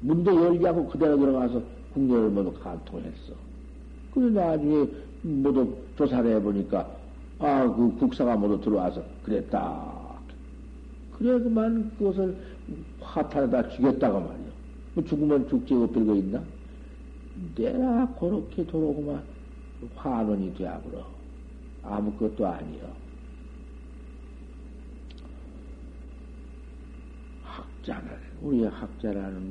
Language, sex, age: Korean, male, 60-79